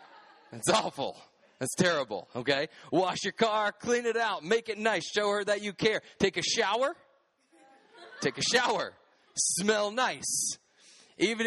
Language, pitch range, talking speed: English, 160-215 Hz, 145 wpm